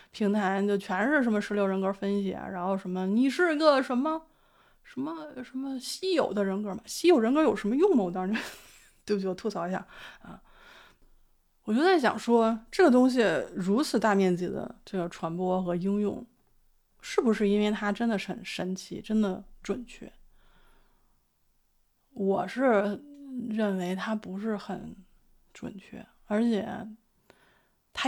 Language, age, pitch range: Chinese, 20-39, 200-255 Hz